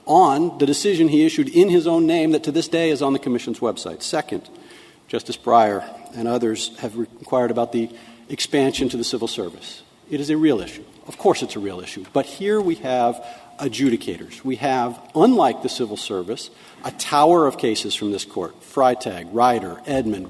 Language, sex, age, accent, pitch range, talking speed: English, male, 50-69, American, 120-160 Hz, 190 wpm